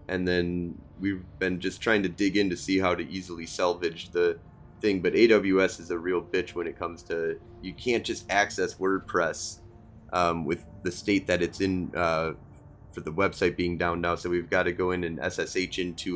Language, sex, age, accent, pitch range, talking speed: English, male, 20-39, American, 90-110 Hz, 205 wpm